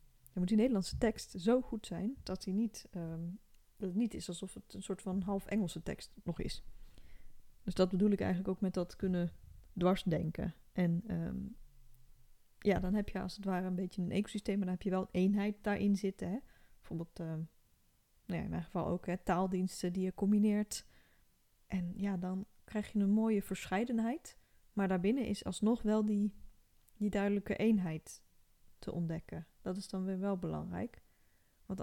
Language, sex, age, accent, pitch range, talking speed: Dutch, female, 20-39, Dutch, 180-205 Hz, 170 wpm